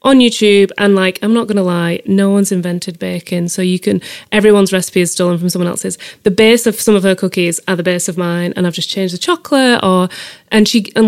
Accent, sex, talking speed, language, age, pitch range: British, female, 245 wpm, English, 30-49, 185-220 Hz